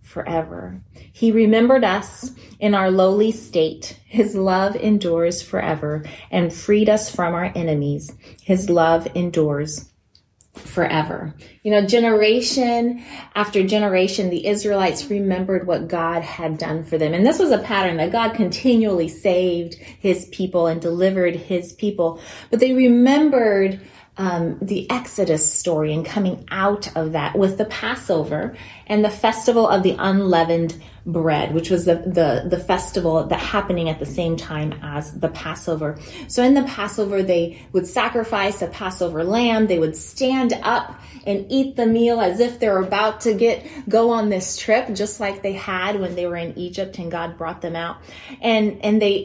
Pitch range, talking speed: 170-220 Hz, 160 wpm